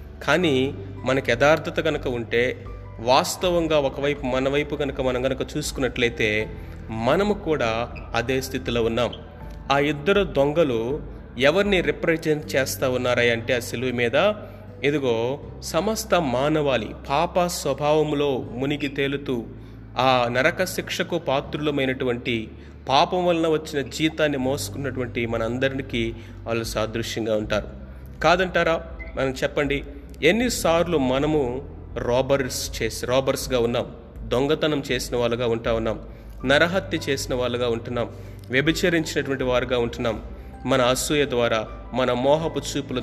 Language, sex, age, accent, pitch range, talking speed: Telugu, male, 30-49, native, 115-145 Hz, 105 wpm